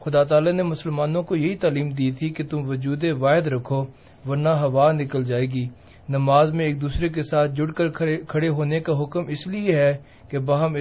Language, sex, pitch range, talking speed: Urdu, male, 140-165 Hz, 200 wpm